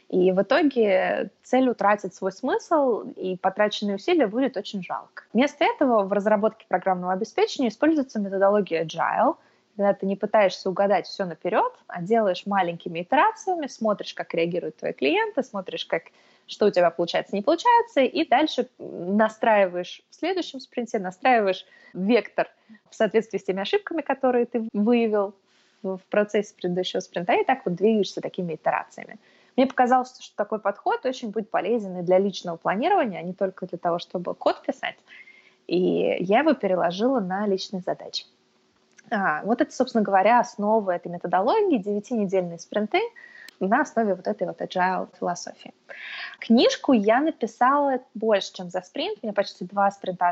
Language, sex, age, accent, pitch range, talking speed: Russian, female, 20-39, native, 190-255 Hz, 150 wpm